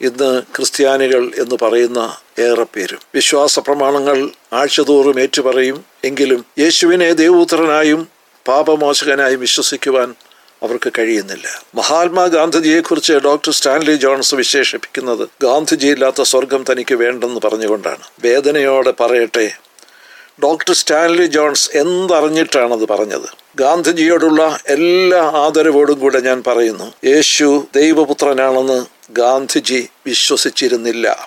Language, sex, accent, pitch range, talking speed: English, male, Indian, 130-160 Hz, 80 wpm